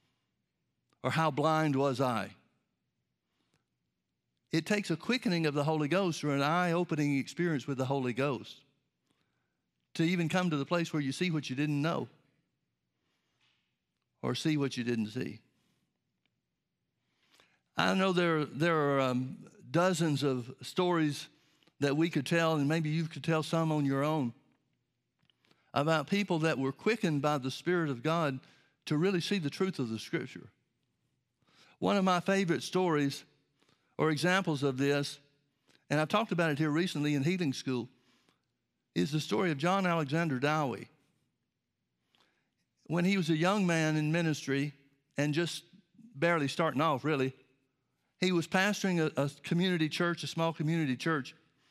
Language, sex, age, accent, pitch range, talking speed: English, male, 60-79, American, 140-170 Hz, 150 wpm